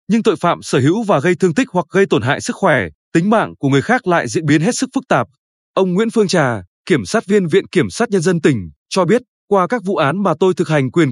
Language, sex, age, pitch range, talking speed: Vietnamese, male, 20-39, 155-200 Hz, 275 wpm